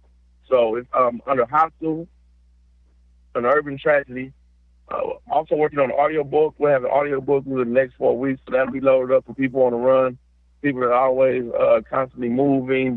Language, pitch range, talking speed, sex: English, 120-140 Hz, 185 wpm, male